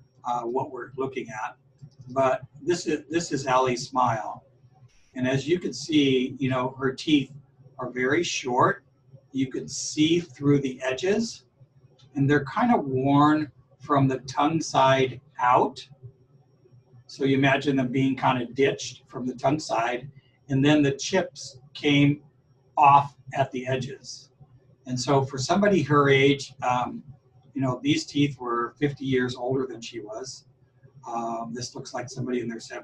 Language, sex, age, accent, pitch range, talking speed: English, male, 60-79, American, 130-145 Hz, 155 wpm